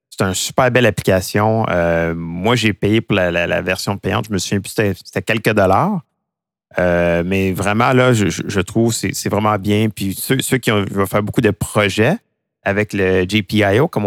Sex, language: male, French